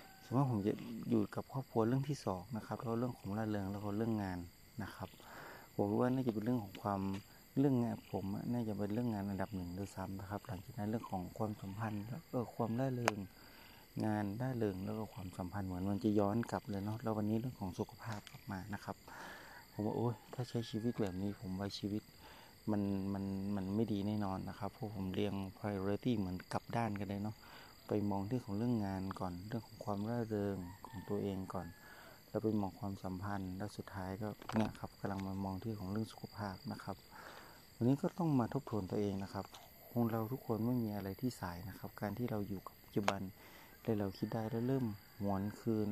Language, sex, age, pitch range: Thai, male, 30-49, 100-115 Hz